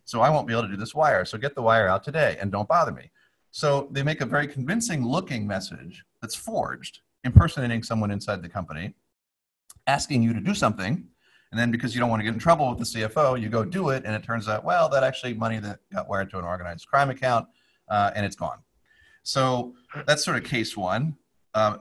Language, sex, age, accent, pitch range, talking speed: English, male, 40-59, American, 105-135 Hz, 225 wpm